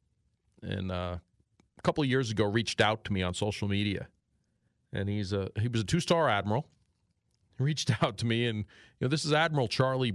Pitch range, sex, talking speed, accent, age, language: 100-135 Hz, male, 200 wpm, American, 40-59, English